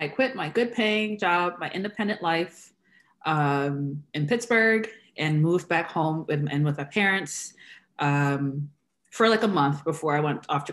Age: 20-39